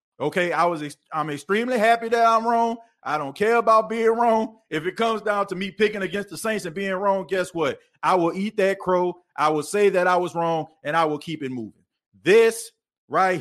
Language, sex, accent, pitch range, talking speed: English, male, American, 155-205 Hz, 235 wpm